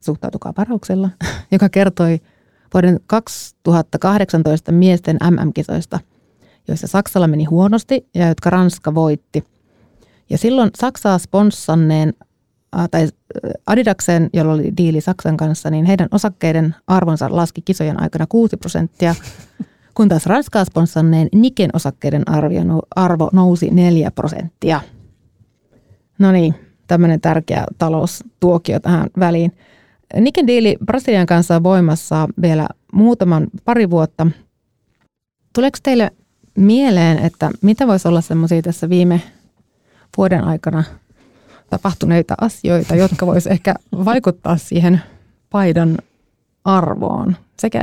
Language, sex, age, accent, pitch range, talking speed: Finnish, female, 30-49, native, 160-195 Hz, 105 wpm